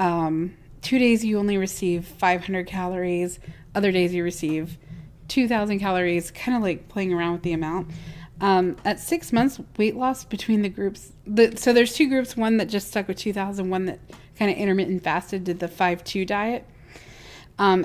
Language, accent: English, American